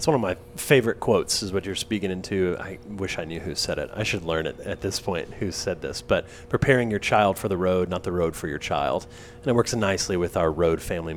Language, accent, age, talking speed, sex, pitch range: English, American, 30-49, 265 wpm, male, 95-120 Hz